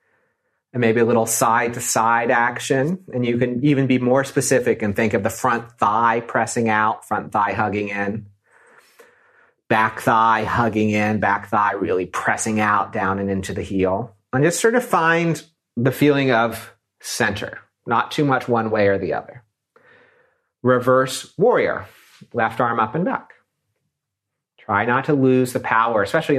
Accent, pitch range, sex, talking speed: American, 110-130 Hz, male, 160 wpm